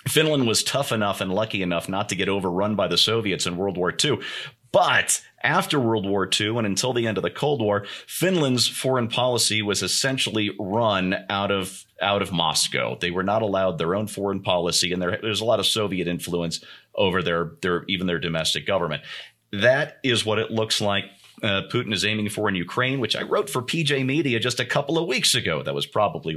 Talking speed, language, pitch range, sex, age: 215 wpm, English, 100-125 Hz, male, 40-59